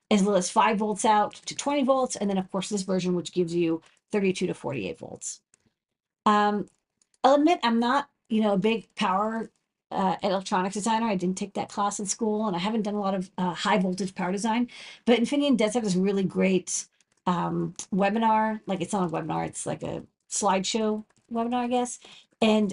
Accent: American